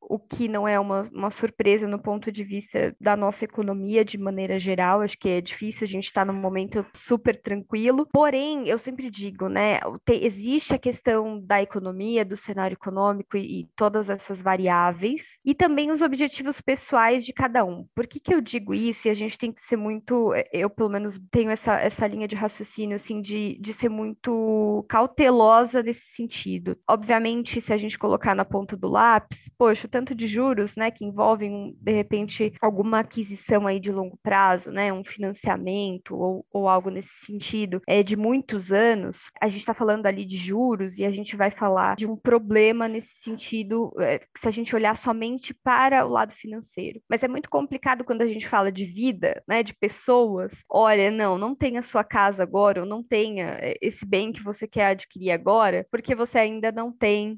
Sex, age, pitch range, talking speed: female, 10-29, 200-235 Hz, 190 wpm